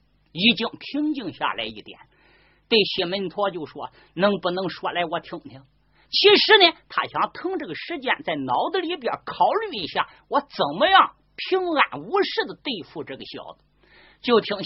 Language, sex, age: Chinese, male, 50-69